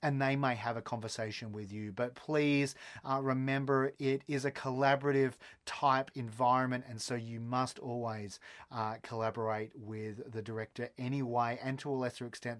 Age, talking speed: 30-49, 155 wpm